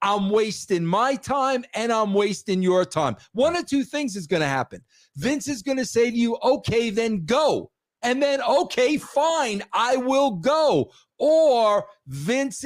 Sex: male